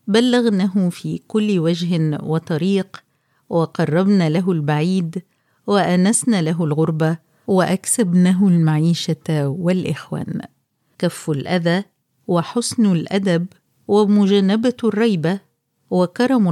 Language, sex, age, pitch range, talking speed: Arabic, female, 50-69, 160-205 Hz, 75 wpm